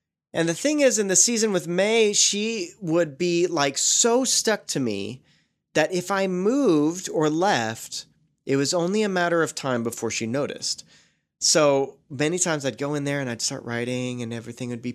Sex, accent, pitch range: male, American, 125-175 Hz